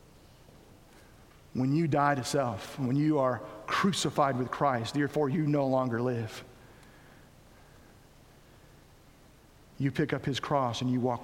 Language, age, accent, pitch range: English, 40-59, American, 130-155 Hz